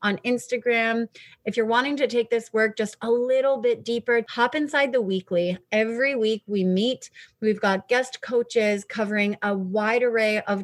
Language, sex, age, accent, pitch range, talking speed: English, female, 30-49, American, 195-240 Hz, 175 wpm